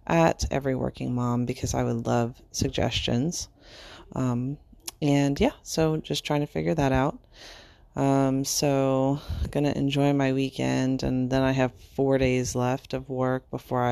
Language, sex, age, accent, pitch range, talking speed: English, female, 30-49, American, 120-135 Hz, 155 wpm